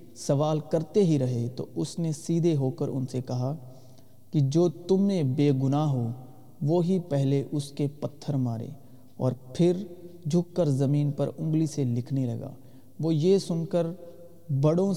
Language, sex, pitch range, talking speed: Urdu, male, 130-160 Hz, 170 wpm